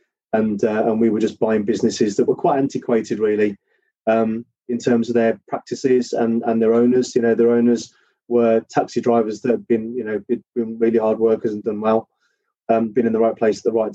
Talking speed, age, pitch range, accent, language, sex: 220 wpm, 30-49, 110-120 Hz, British, English, male